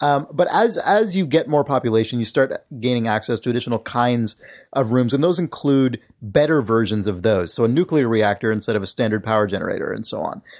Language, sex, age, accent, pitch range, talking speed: English, male, 30-49, American, 115-145 Hz, 210 wpm